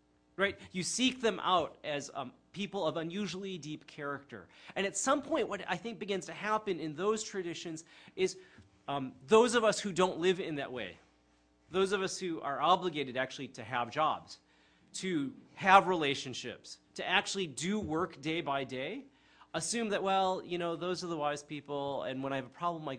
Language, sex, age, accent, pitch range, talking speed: English, male, 30-49, American, 135-205 Hz, 190 wpm